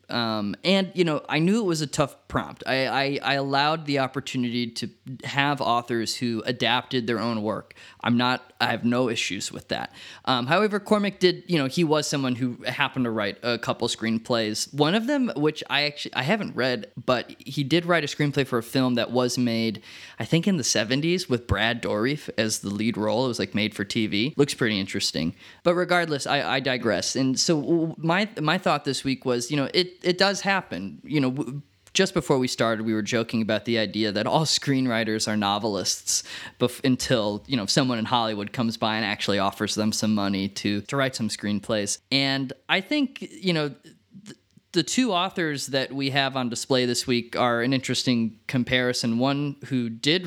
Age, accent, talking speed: 20-39, American, 200 wpm